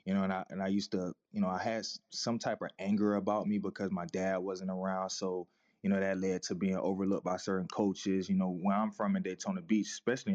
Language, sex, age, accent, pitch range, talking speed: English, male, 20-39, American, 95-105 Hz, 250 wpm